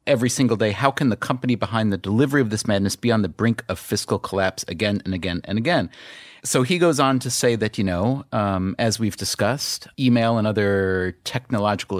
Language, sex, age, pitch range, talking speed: English, male, 30-49, 105-135 Hz, 210 wpm